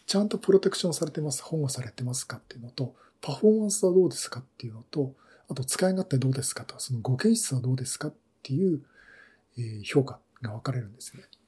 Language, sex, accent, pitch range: Japanese, male, native, 130-175 Hz